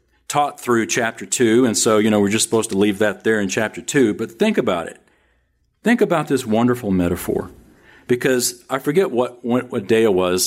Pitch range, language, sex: 100-140 Hz, English, male